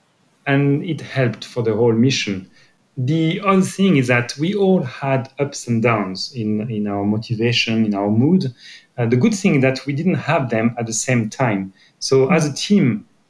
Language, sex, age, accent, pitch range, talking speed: English, male, 30-49, French, 115-155 Hz, 200 wpm